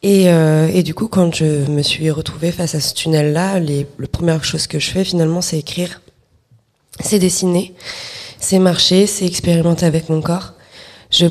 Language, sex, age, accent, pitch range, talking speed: French, female, 20-39, French, 155-175 Hz, 185 wpm